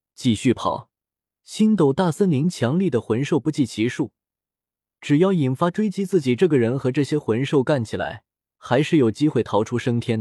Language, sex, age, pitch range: Chinese, male, 20-39, 115-170 Hz